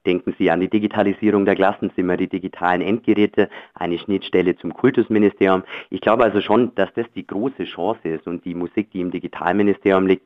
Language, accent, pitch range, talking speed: German, German, 90-105 Hz, 180 wpm